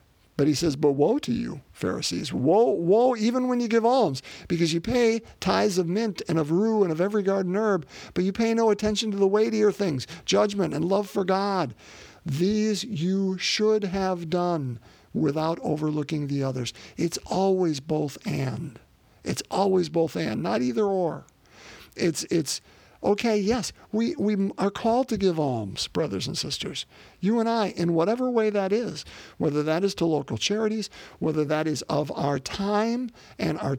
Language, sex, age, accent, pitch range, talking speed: English, male, 50-69, American, 155-210 Hz, 175 wpm